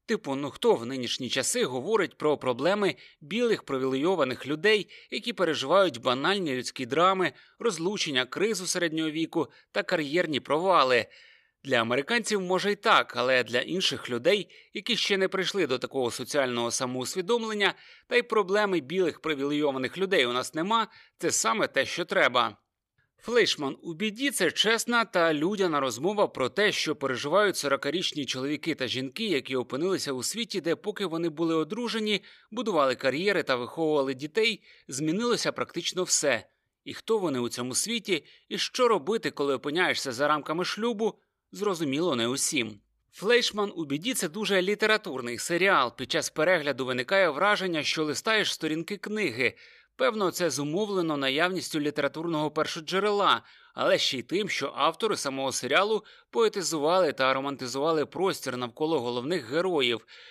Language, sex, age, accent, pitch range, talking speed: Ukrainian, male, 30-49, native, 140-205 Hz, 140 wpm